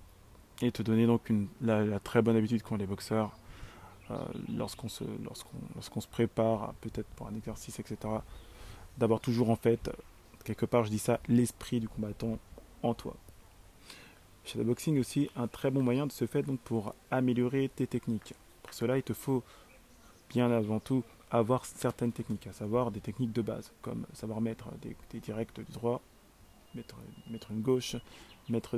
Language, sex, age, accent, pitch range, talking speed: French, male, 20-39, French, 110-125 Hz, 175 wpm